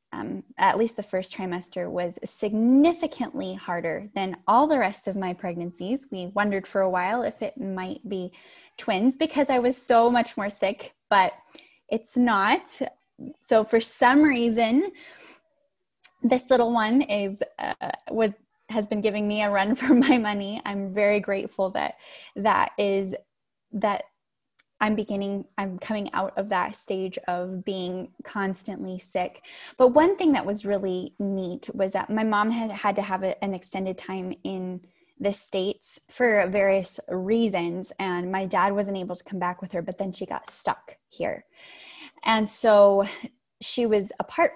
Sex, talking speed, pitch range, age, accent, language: female, 160 wpm, 190-245 Hz, 10-29, American, English